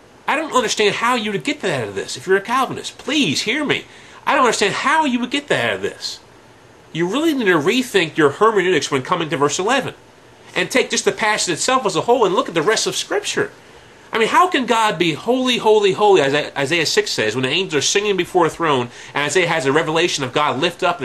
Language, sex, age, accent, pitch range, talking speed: English, male, 30-49, American, 170-260 Hz, 250 wpm